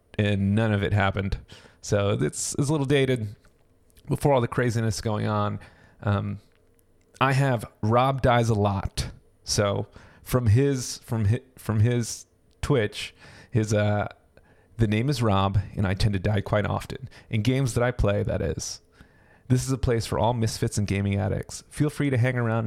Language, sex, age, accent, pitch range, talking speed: English, male, 30-49, American, 100-120 Hz, 175 wpm